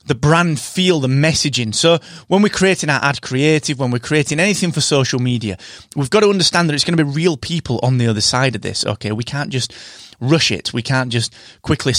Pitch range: 115-160 Hz